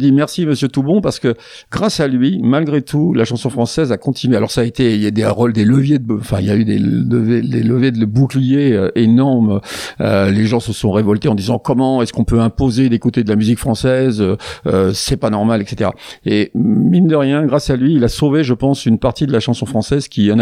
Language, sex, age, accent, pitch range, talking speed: French, male, 50-69, French, 105-135 Hz, 250 wpm